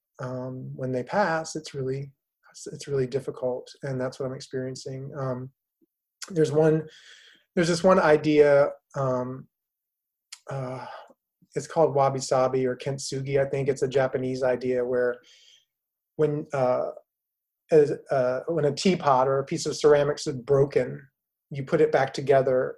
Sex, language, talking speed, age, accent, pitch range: male, English, 140 wpm, 30-49, American, 130-150 Hz